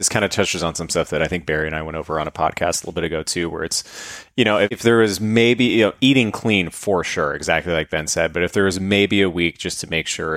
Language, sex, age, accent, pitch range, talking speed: English, male, 20-39, American, 85-100 Hz, 295 wpm